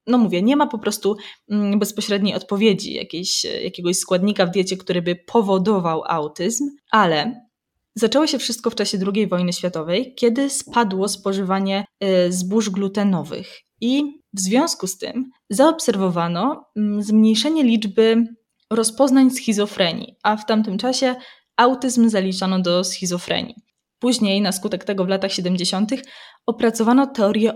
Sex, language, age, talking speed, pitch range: female, Polish, 20-39, 125 wpm, 190-235 Hz